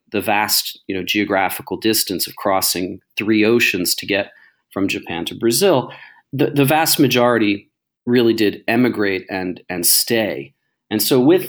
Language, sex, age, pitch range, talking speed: English, male, 40-59, 95-120 Hz, 150 wpm